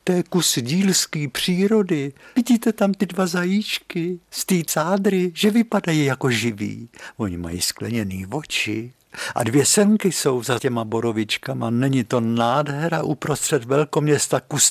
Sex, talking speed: male, 135 wpm